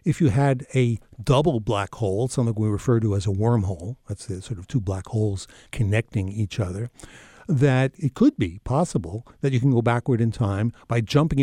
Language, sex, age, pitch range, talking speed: English, male, 60-79, 110-140 Hz, 200 wpm